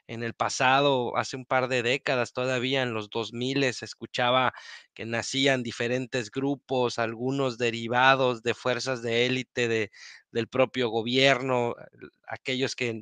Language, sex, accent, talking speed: Spanish, male, Mexican, 140 wpm